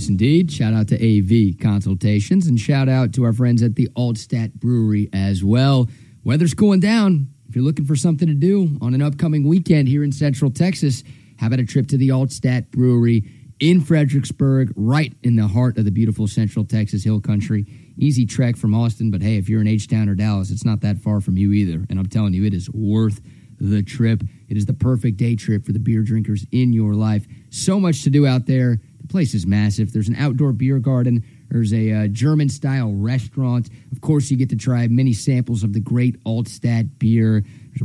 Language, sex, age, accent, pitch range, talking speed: English, male, 30-49, American, 110-135 Hz, 210 wpm